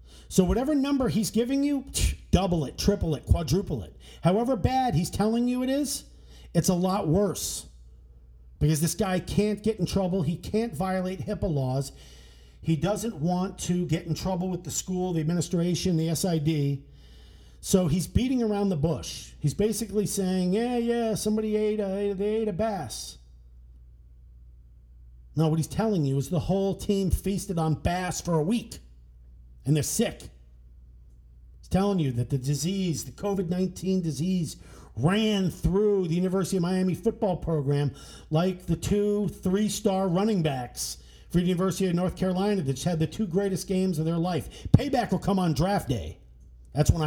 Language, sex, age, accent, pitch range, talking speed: English, male, 50-69, American, 135-195 Hz, 165 wpm